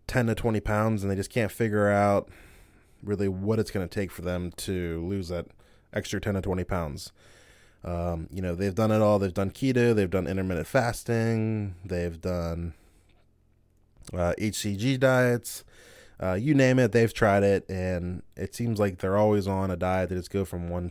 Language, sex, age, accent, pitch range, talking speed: English, male, 20-39, American, 90-110 Hz, 190 wpm